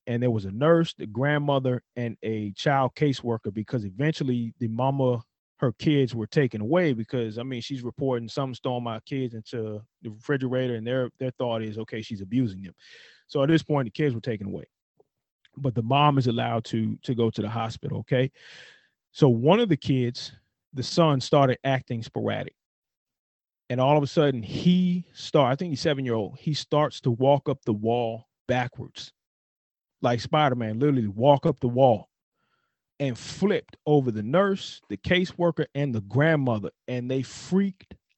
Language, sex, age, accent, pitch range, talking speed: English, male, 30-49, American, 120-150 Hz, 175 wpm